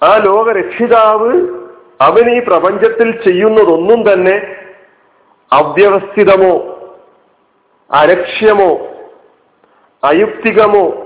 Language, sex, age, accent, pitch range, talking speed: Malayalam, male, 50-69, native, 195-250 Hz, 55 wpm